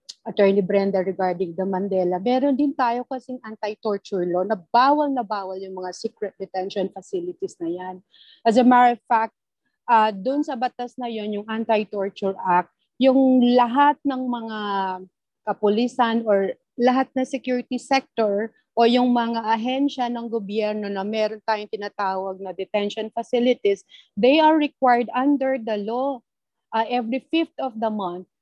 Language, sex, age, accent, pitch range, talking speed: English, female, 30-49, Filipino, 210-255 Hz, 150 wpm